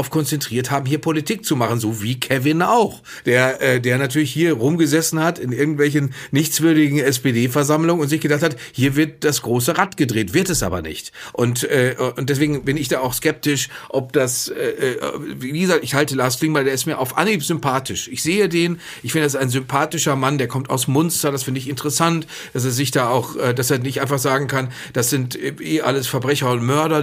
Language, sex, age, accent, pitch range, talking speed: German, male, 40-59, German, 130-155 Hz, 215 wpm